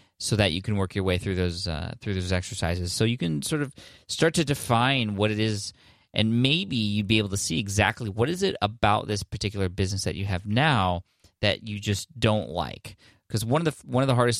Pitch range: 95-115 Hz